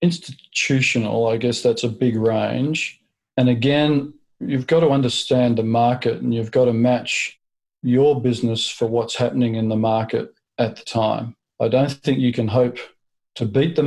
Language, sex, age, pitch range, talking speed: English, male, 40-59, 115-135 Hz, 175 wpm